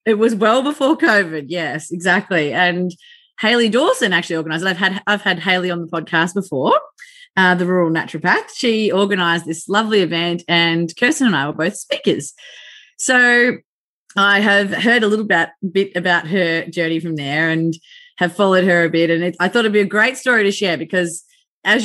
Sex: female